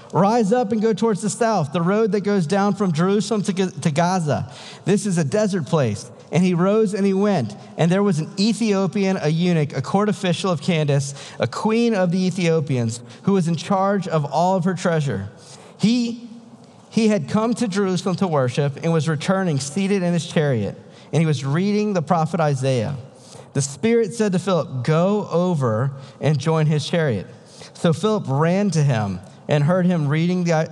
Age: 50-69